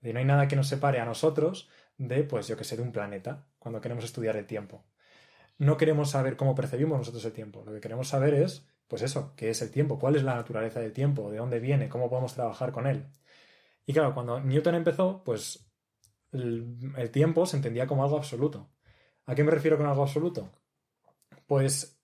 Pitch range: 120-145 Hz